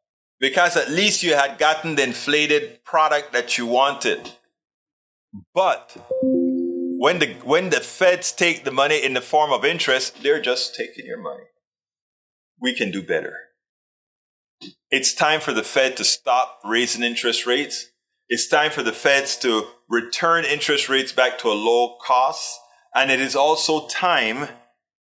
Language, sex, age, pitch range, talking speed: English, male, 30-49, 120-170 Hz, 155 wpm